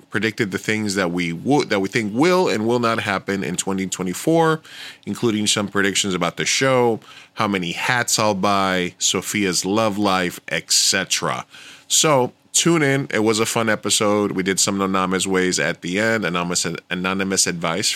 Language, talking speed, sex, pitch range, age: English, 165 wpm, male, 95-115 Hz, 20-39